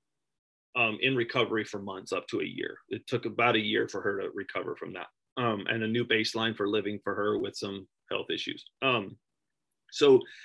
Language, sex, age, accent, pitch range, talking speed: English, male, 30-49, American, 115-130 Hz, 200 wpm